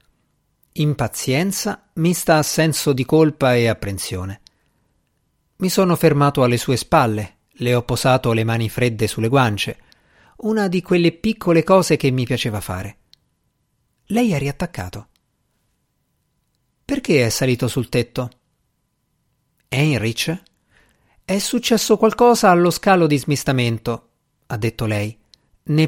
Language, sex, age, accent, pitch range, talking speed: Italian, male, 50-69, native, 115-165 Hz, 120 wpm